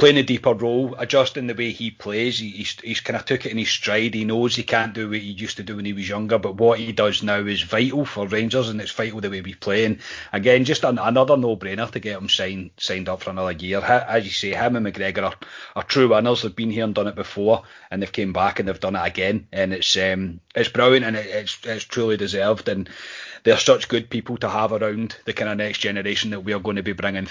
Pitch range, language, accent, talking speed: 100-120 Hz, English, British, 270 wpm